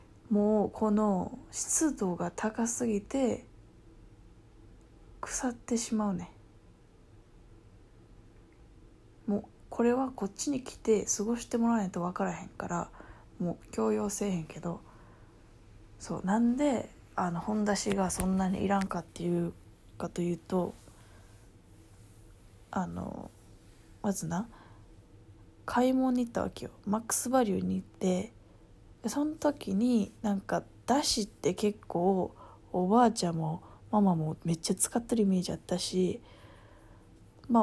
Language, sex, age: Japanese, female, 20-39